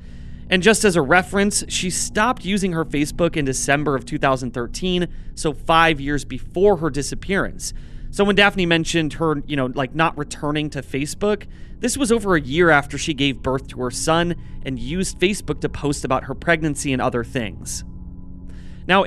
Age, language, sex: 30-49, English, male